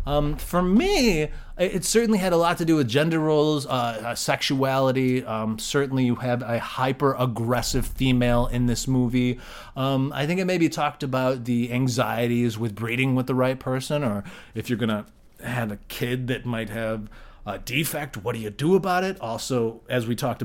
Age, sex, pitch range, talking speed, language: 30-49, male, 115-150 Hz, 190 wpm, English